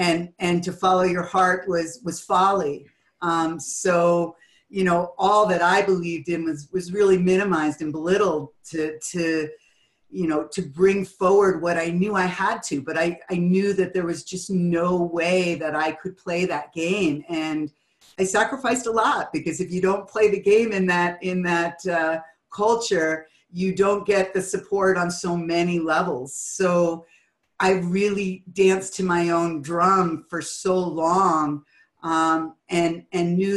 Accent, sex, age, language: American, female, 50-69, English